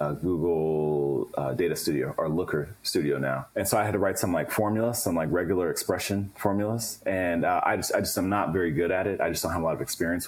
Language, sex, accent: English, male, American